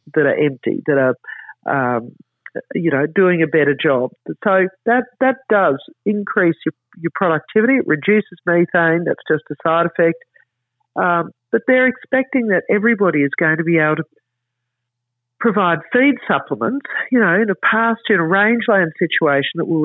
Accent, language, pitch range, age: Australian, English, 155-205 Hz, 50-69